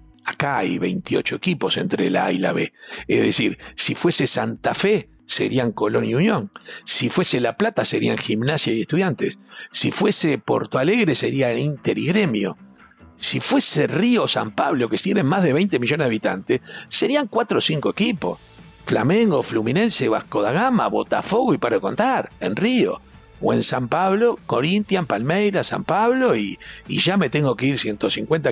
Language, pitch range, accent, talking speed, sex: Spanish, 135-205 Hz, Argentinian, 170 wpm, male